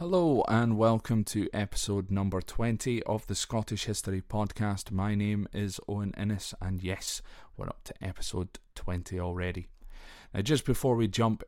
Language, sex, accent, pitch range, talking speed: English, male, British, 100-120 Hz, 155 wpm